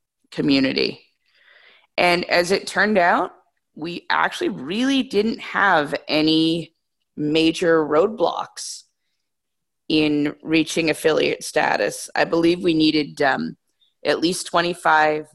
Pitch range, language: 140-180 Hz, English